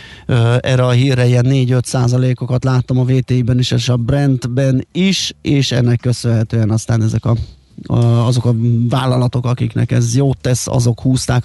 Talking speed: 150 wpm